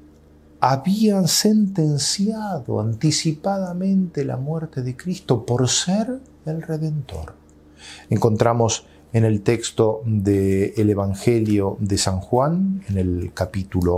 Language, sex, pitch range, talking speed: Spanish, male, 85-125 Hz, 100 wpm